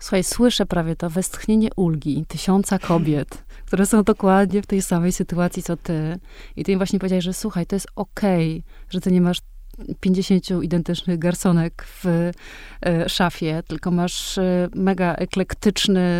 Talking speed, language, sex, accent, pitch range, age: 150 wpm, Polish, female, native, 165-195 Hz, 30-49